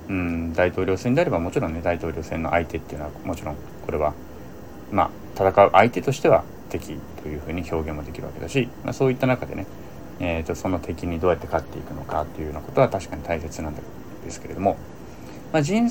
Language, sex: Japanese, male